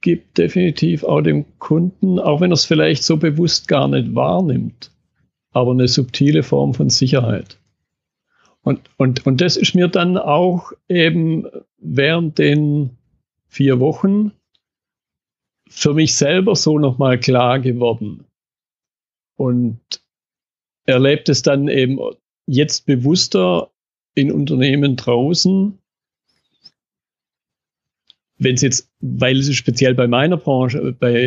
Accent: German